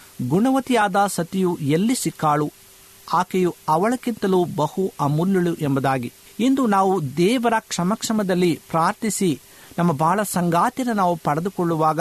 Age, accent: 50-69, native